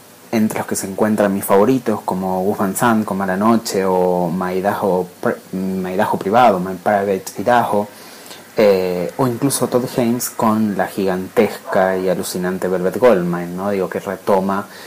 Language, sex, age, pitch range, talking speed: English, male, 30-49, 95-120 Hz, 145 wpm